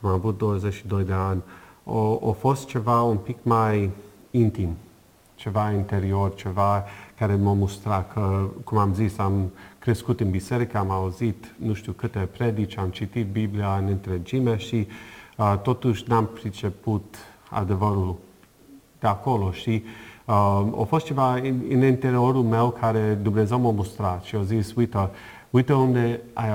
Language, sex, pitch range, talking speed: Romanian, male, 100-120 Hz, 140 wpm